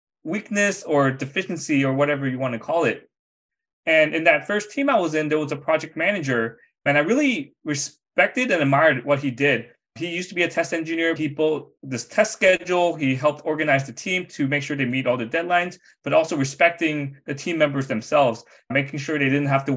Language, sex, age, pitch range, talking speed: English, male, 20-39, 135-165 Hz, 210 wpm